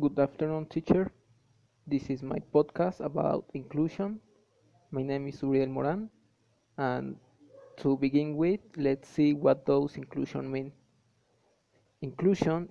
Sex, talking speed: male, 120 wpm